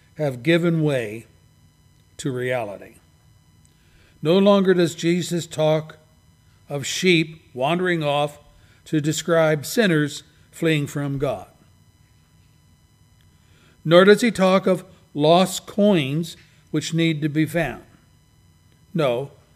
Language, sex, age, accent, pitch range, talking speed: English, male, 60-79, American, 140-180 Hz, 100 wpm